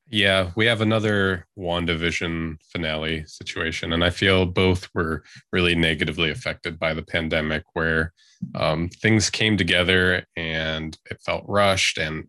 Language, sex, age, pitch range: English, male, 20-39, 85-100 Hz